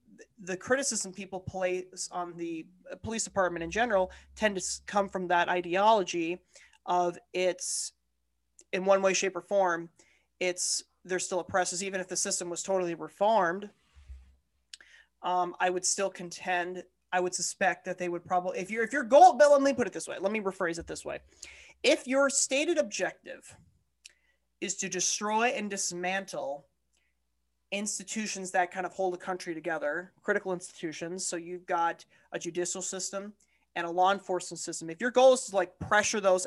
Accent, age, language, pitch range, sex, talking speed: American, 30-49, English, 175-195 Hz, male, 170 wpm